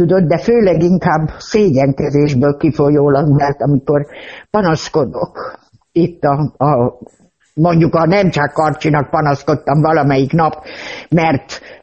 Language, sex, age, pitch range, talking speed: Hungarian, female, 60-79, 155-245 Hz, 100 wpm